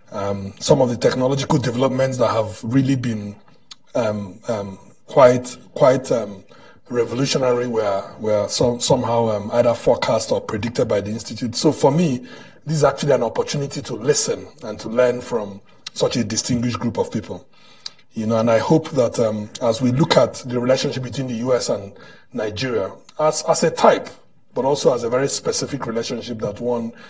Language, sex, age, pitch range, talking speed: English, male, 30-49, 110-135 Hz, 175 wpm